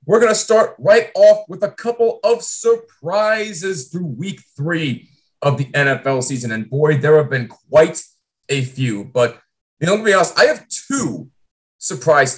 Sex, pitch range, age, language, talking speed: male, 135-225 Hz, 30-49, English, 170 wpm